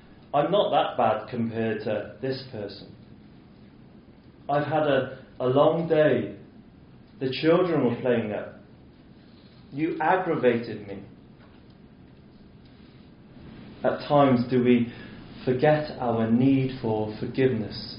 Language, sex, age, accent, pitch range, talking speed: English, male, 30-49, British, 120-155 Hz, 105 wpm